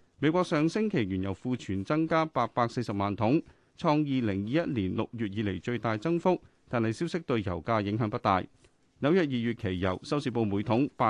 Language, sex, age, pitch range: Chinese, male, 30-49, 105-155 Hz